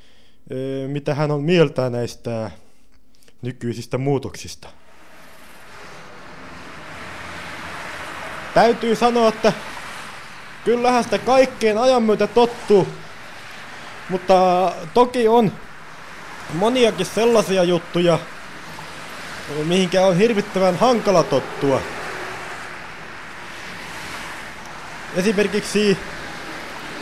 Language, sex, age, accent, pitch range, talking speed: Finnish, male, 20-39, native, 130-205 Hz, 60 wpm